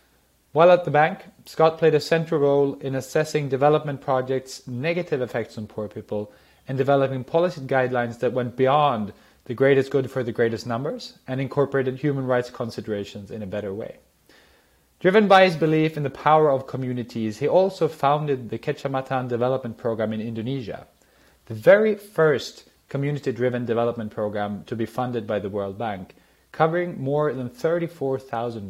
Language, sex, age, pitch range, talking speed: English, male, 30-49, 120-150 Hz, 160 wpm